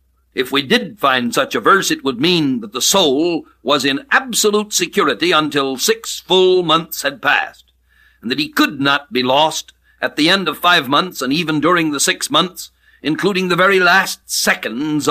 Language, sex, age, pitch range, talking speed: English, male, 60-79, 140-195 Hz, 185 wpm